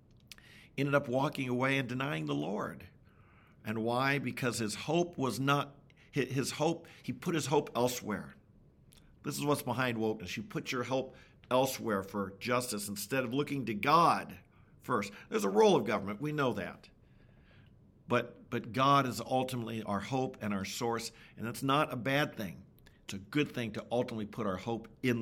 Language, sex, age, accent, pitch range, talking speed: English, male, 50-69, American, 120-145 Hz, 175 wpm